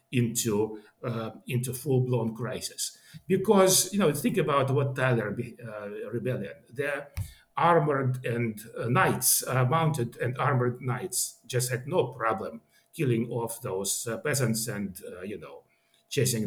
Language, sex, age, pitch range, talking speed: English, male, 60-79, 120-155 Hz, 140 wpm